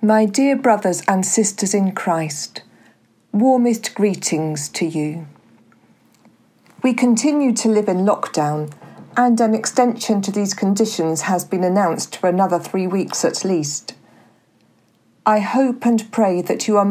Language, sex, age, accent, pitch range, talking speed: English, female, 40-59, British, 170-230 Hz, 140 wpm